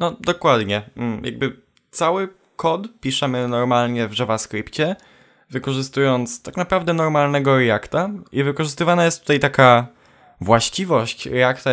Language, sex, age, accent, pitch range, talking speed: Polish, male, 10-29, native, 120-160 Hz, 105 wpm